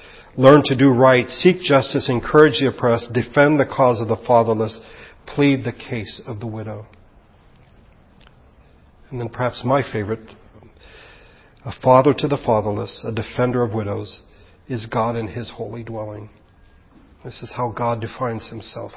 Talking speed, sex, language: 150 wpm, male, English